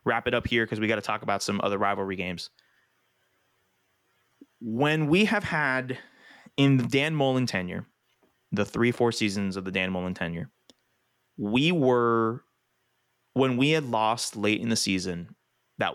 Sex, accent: male, American